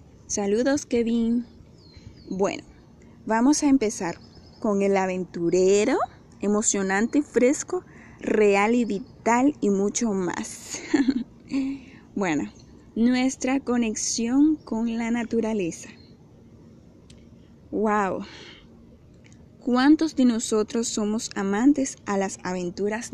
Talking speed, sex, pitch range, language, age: 85 wpm, female, 200-260 Hz, Spanish, 10-29